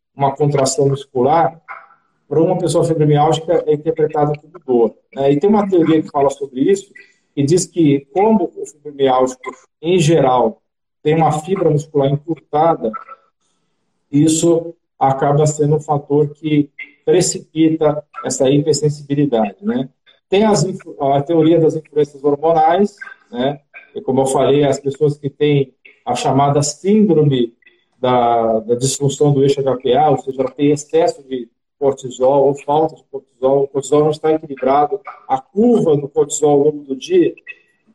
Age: 50-69